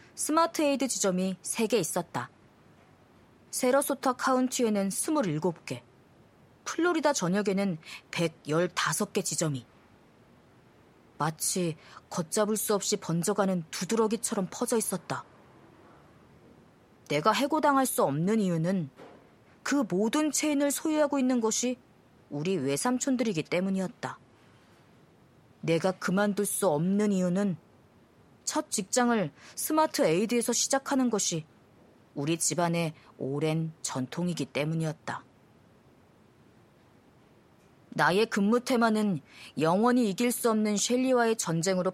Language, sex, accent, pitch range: Korean, female, native, 165-235 Hz